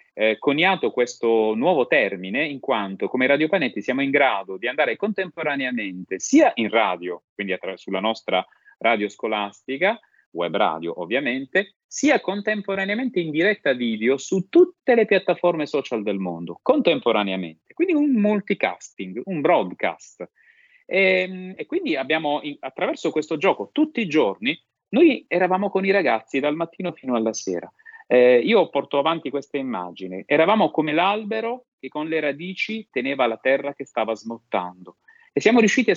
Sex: male